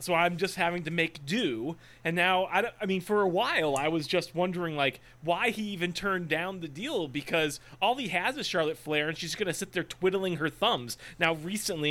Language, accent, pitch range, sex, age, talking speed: English, American, 135-185 Hz, male, 30-49, 230 wpm